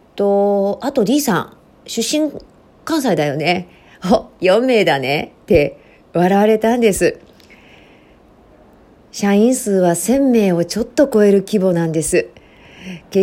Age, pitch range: 40-59, 180-230 Hz